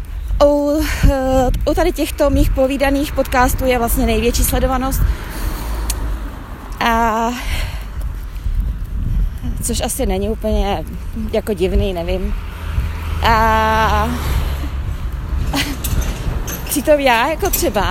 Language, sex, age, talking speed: Czech, female, 20-39, 85 wpm